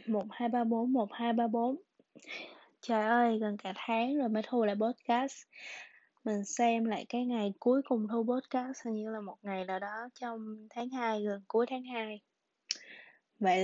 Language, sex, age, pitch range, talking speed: Vietnamese, female, 20-39, 205-250 Hz, 155 wpm